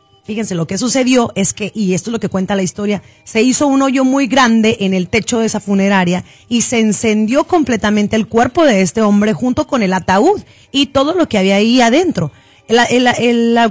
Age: 30-49